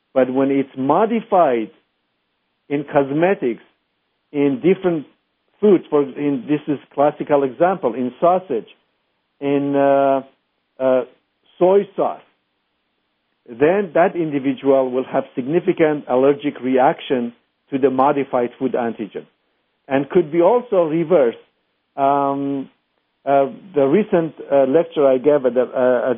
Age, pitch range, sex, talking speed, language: 50-69, 130-170 Hz, male, 120 wpm, English